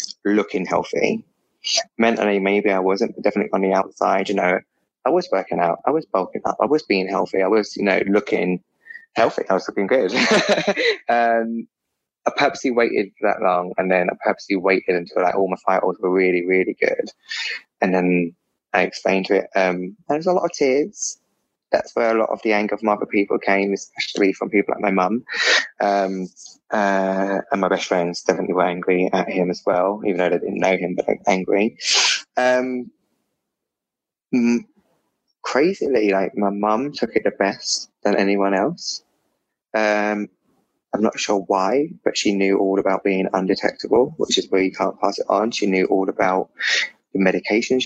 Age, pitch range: 20-39, 95-115 Hz